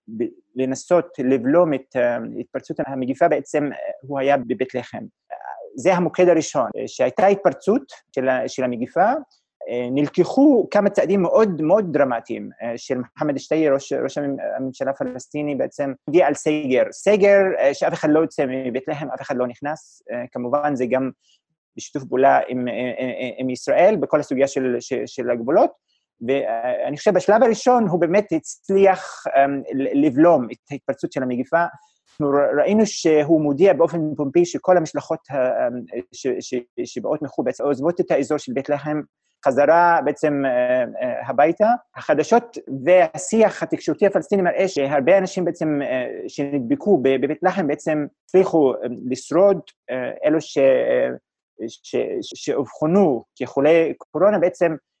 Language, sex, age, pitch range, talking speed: Hebrew, male, 30-49, 135-190 Hz, 120 wpm